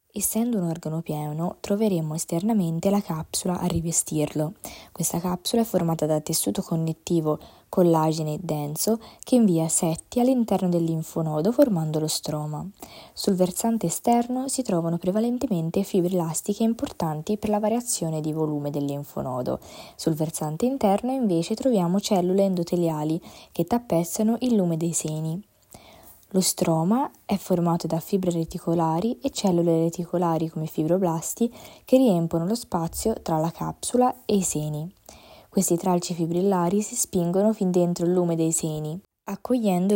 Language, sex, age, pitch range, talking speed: Italian, female, 20-39, 165-210 Hz, 135 wpm